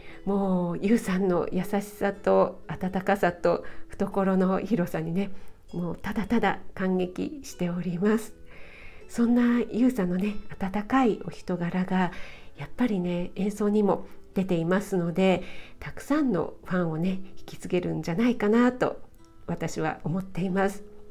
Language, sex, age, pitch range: Japanese, female, 50-69, 180-225 Hz